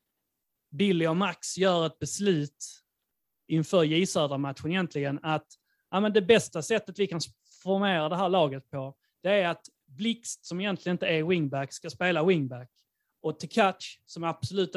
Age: 30-49